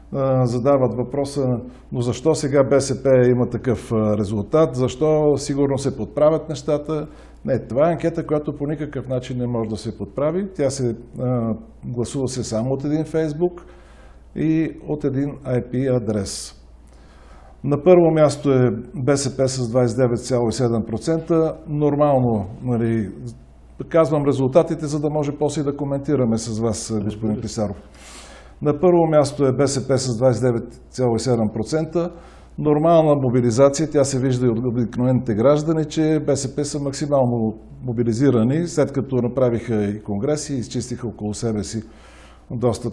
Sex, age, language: male, 50-69, Bulgarian